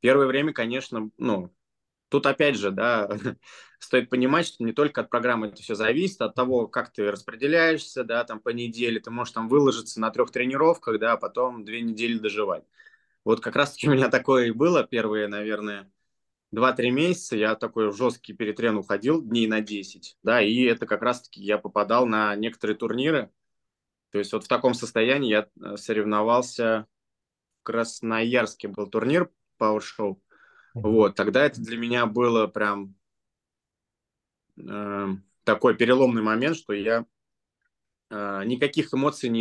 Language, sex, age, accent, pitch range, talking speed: Russian, male, 20-39, native, 105-125 Hz, 155 wpm